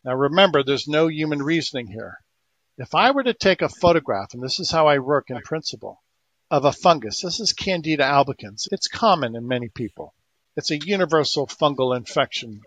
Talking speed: 185 wpm